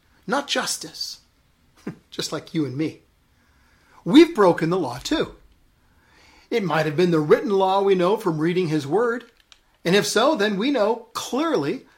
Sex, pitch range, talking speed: male, 145-235 Hz, 160 wpm